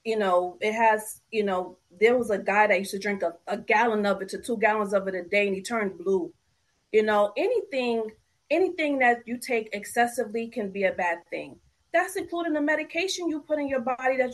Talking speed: 220 wpm